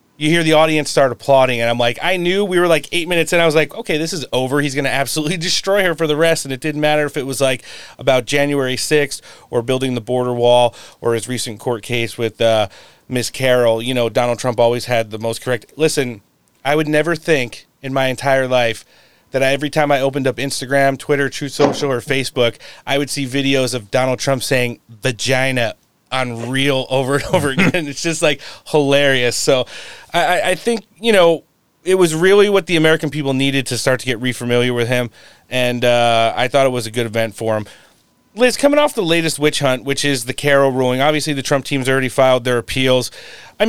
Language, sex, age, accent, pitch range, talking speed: English, male, 30-49, American, 125-155 Hz, 220 wpm